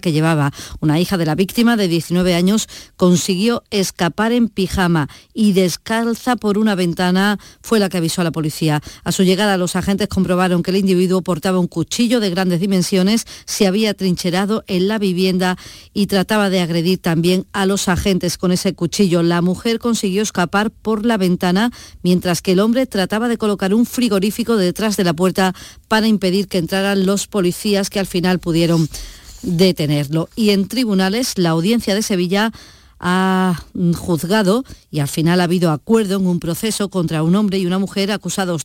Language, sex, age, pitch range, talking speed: Spanish, female, 40-59, 175-210 Hz, 175 wpm